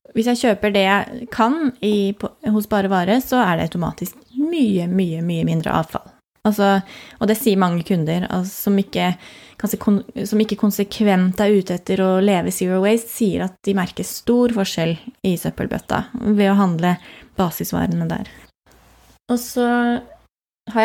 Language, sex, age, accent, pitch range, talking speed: English, female, 20-39, Swedish, 185-220 Hz, 160 wpm